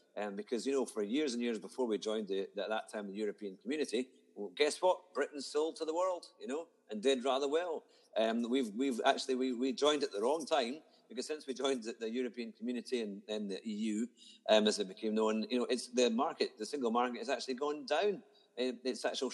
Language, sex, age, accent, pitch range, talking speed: English, male, 50-69, British, 110-145 Hz, 230 wpm